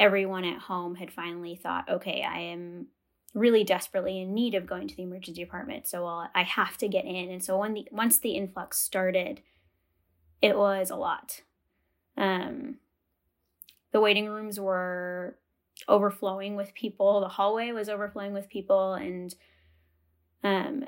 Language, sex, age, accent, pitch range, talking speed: English, female, 10-29, American, 185-210 Hz, 145 wpm